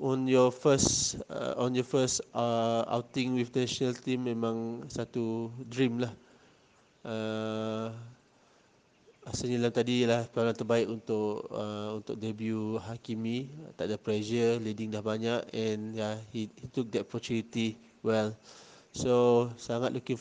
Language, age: Malay, 20-39